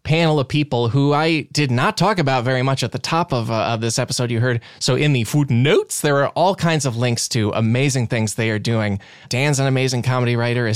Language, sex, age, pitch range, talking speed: English, male, 20-39, 115-145 Hz, 240 wpm